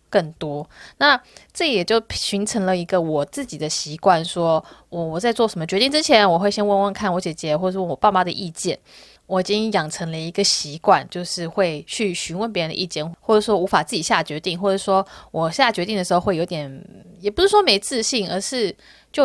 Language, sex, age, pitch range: Chinese, female, 20-39, 175-235 Hz